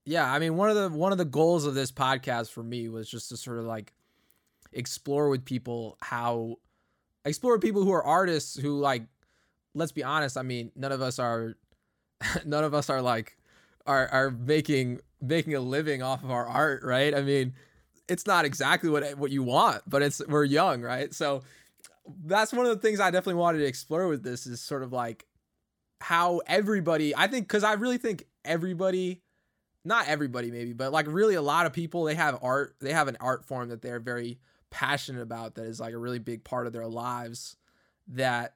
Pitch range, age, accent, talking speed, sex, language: 120-155 Hz, 20-39, American, 205 wpm, male, English